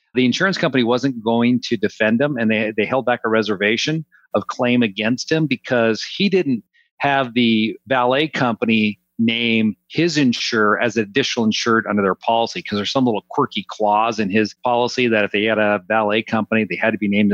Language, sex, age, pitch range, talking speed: English, male, 40-59, 110-155 Hz, 195 wpm